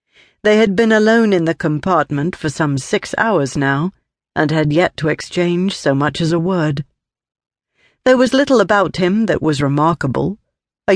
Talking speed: 170 wpm